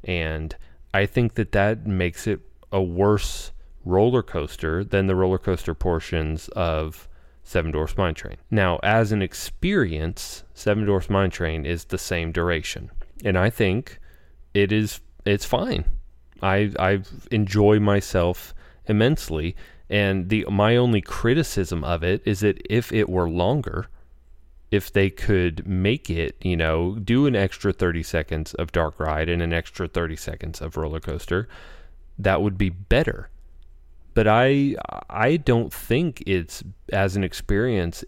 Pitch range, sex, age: 80-105 Hz, male, 30-49